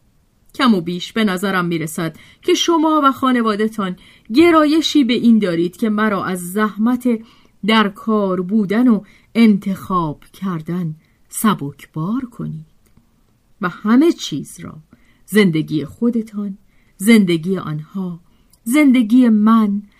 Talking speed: 110 wpm